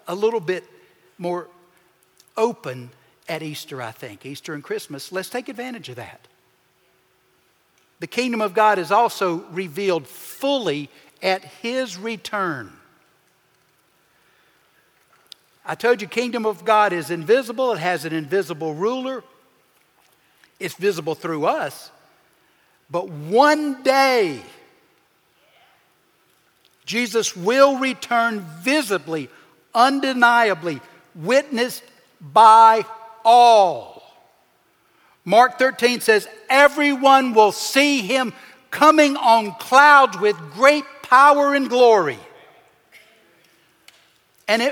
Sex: male